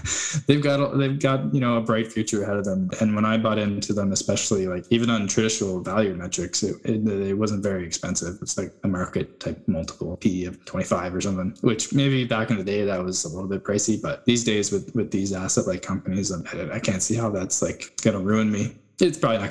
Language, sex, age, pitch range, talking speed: English, male, 10-29, 100-120 Hz, 235 wpm